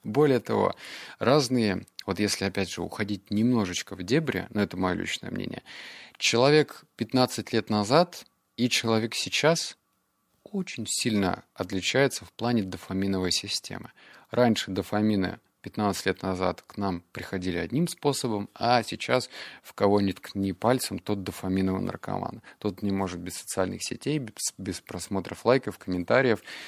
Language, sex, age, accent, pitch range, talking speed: Russian, male, 30-49, native, 95-115 Hz, 135 wpm